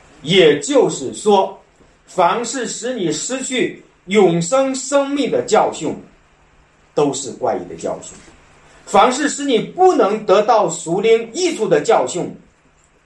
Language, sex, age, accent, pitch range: Chinese, male, 50-69, native, 185-275 Hz